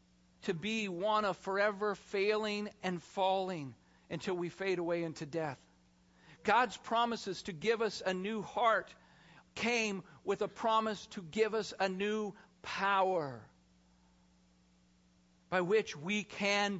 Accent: American